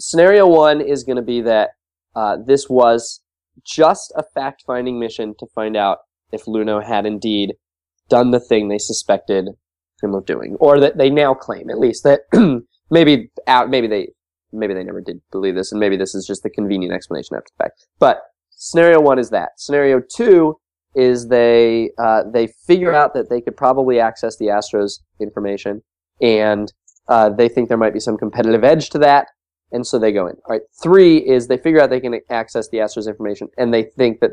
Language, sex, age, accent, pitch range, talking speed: English, male, 20-39, American, 105-135 Hz, 200 wpm